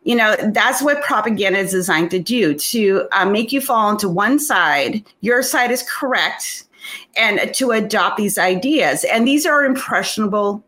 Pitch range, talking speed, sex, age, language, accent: 190-270 Hz, 170 wpm, female, 30-49, English, American